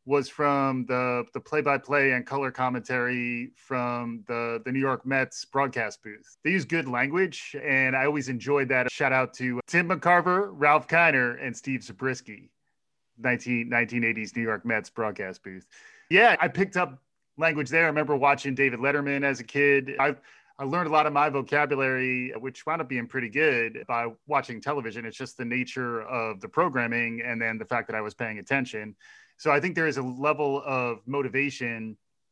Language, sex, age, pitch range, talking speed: English, male, 30-49, 120-140 Hz, 180 wpm